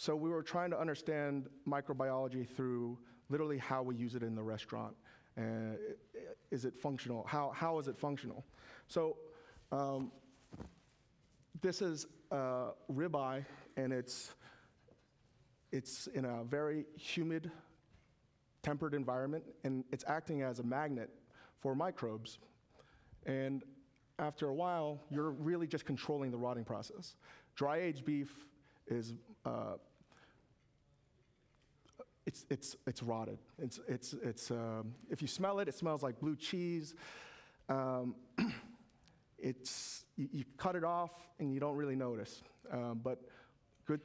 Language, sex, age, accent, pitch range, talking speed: English, male, 30-49, American, 120-150 Hz, 130 wpm